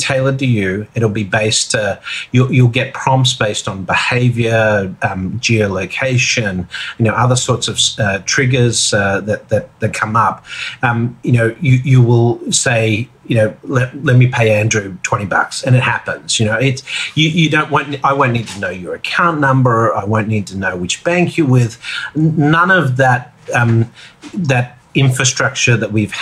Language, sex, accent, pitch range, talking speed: English, male, Australian, 110-135 Hz, 185 wpm